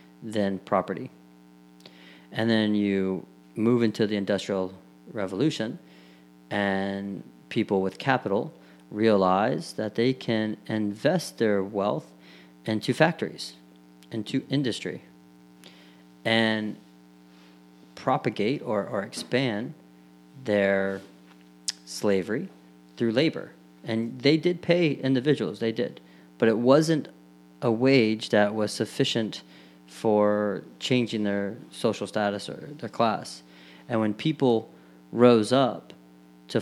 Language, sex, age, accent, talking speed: English, male, 40-59, American, 105 wpm